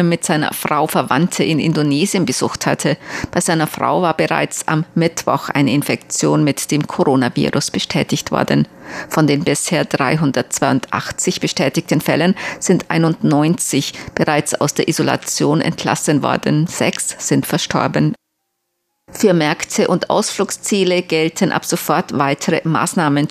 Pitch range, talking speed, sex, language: 145-175 Hz, 125 wpm, female, German